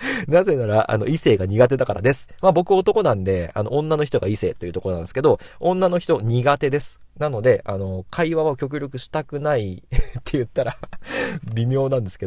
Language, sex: Japanese, male